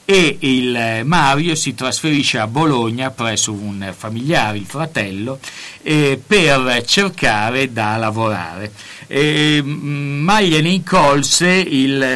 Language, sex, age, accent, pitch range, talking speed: Italian, male, 50-69, native, 120-155 Hz, 110 wpm